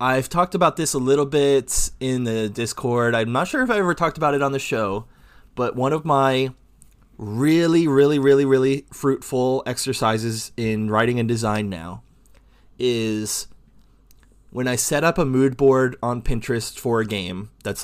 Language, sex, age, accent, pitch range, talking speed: English, male, 20-39, American, 105-130 Hz, 170 wpm